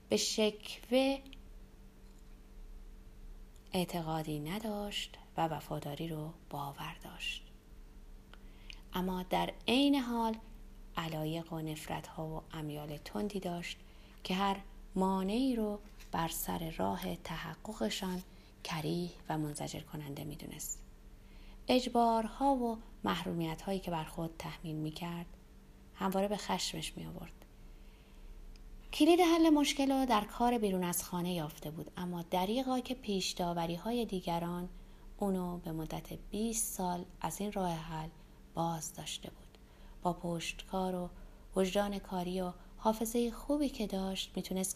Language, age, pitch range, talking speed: Persian, 30-49, 160-210 Hz, 120 wpm